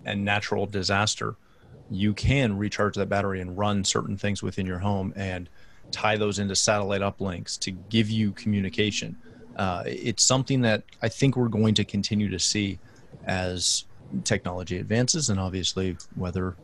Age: 30-49